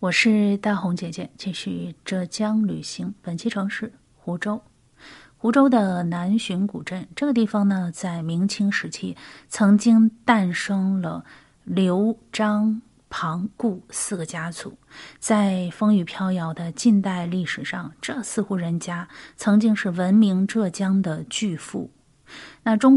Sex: female